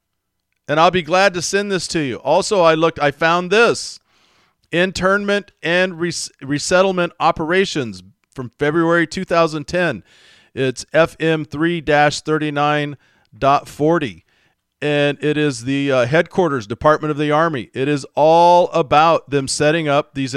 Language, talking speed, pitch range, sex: English, 125 wpm, 135-180 Hz, male